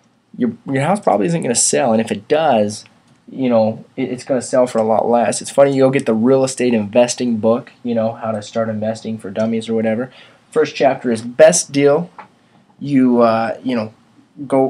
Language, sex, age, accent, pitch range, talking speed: English, male, 20-39, American, 115-140 Hz, 215 wpm